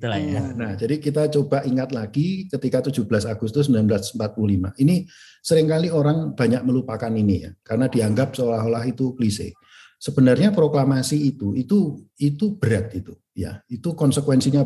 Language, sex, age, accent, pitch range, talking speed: Indonesian, male, 50-69, native, 115-155 Hz, 135 wpm